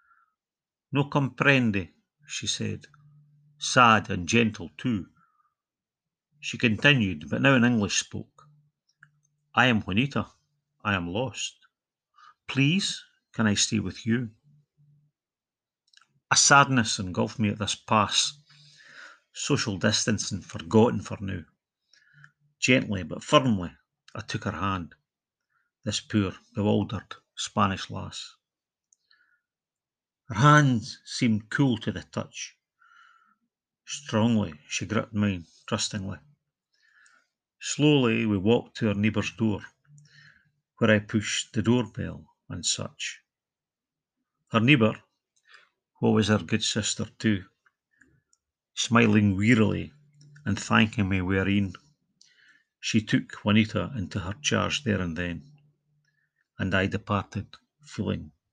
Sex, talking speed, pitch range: male, 105 wpm, 105-145 Hz